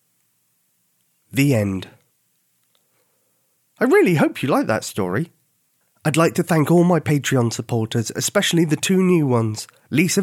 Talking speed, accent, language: 135 wpm, British, English